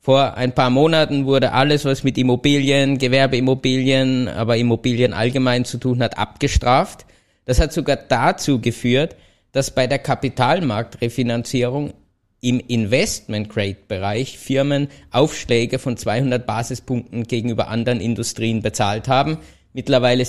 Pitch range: 115-135 Hz